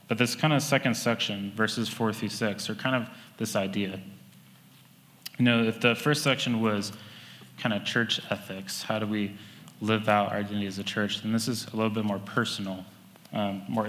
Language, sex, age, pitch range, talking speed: English, male, 20-39, 105-125 Hz, 200 wpm